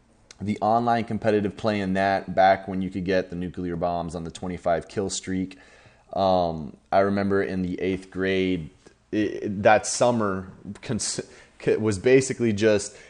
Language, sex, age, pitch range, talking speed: English, male, 20-39, 95-110 Hz, 155 wpm